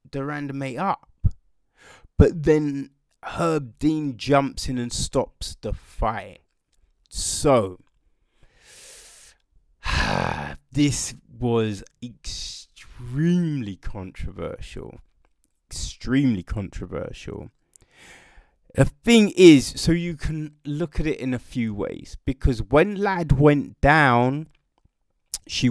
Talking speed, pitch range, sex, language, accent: 95 wpm, 110-150 Hz, male, English, British